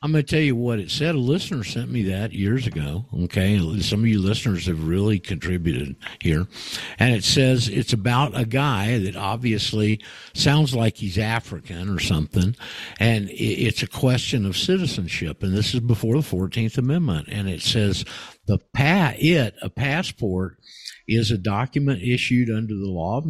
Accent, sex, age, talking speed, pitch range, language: American, male, 60-79, 175 wpm, 100-135 Hz, English